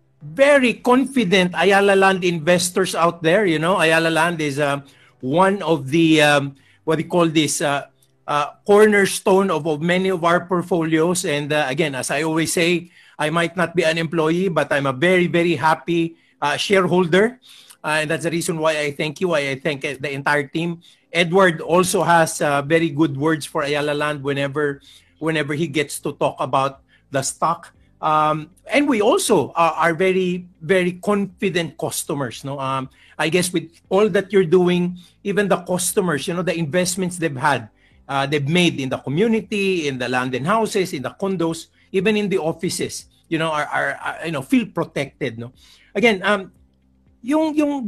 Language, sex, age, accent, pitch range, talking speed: English, male, 50-69, Filipino, 150-190 Hz, 185 wpm